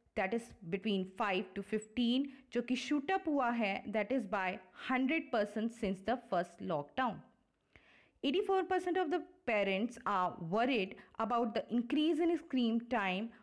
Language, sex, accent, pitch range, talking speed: Hindi, female, native, 205-275 Hz, 155 wpm